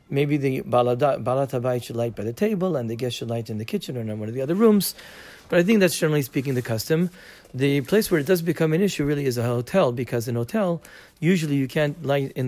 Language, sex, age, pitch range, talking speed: English, male, 40-59, 120-150 Hz, 255 wpm